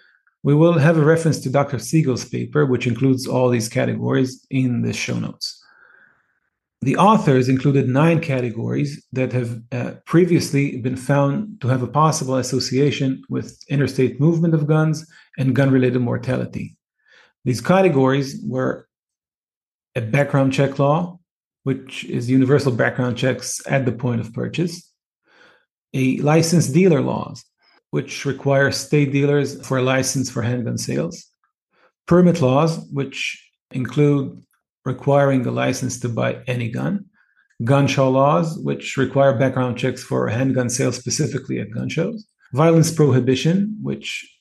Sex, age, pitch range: male, 40-59, 130-155 Hz